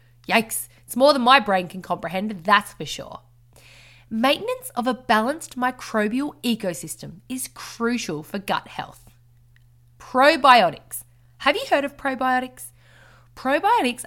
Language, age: English, 20-39